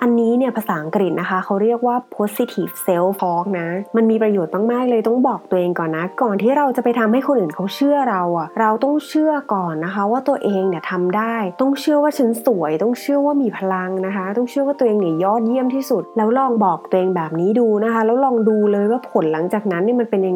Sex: female